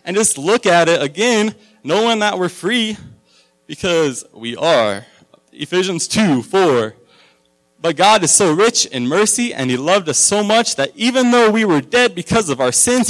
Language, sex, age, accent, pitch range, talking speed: English, male, 20-39, American, 120-175 Hz, 180 wpm